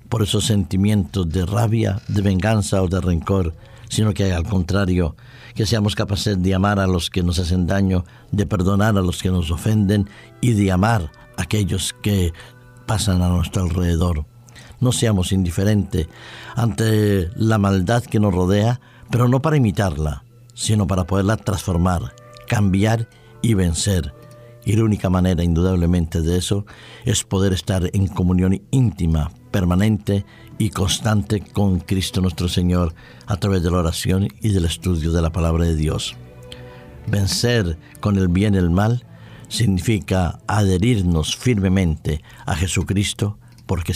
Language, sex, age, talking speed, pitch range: Spanish, male, 60-79, 145 wpm, 90-110 Hz